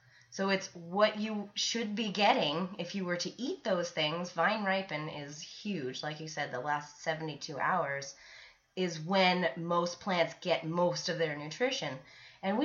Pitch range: 160-215 Hz